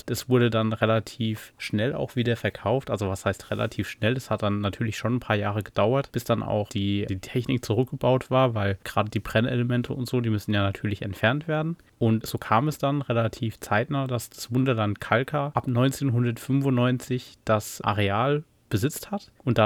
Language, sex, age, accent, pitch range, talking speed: German, male, 30-49, German, 105-130 Hz, 185 wpm